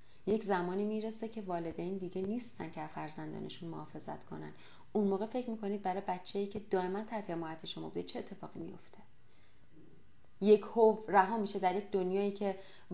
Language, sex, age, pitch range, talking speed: Persian, female, 30-49, 165-205 Hz, 150 wpm